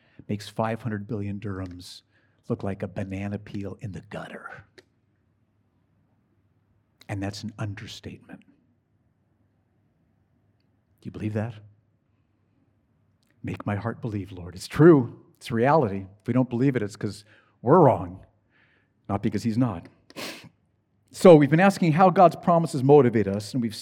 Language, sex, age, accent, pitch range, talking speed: English, male, 50-69, American, 105-135 Hz, 135 wpm